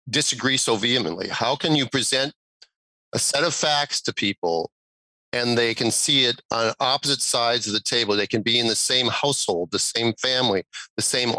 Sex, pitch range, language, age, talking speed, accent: male, 115-140 Hz, English, 40-59, 190 wpm, American